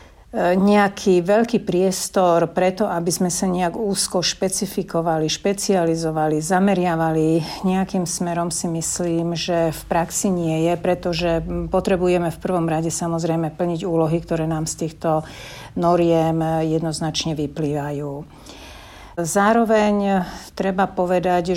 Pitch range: 160-180 Hz